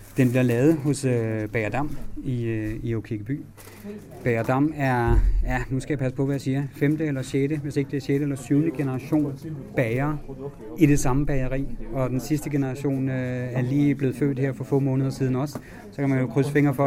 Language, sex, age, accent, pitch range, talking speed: Danish, male, 30-49, native, 120-140 Hz, 210 wpm